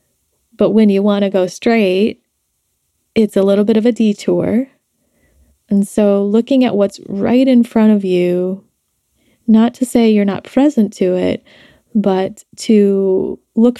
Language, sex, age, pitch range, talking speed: English, female, 20-39, 195-225 Hz, 150 wpm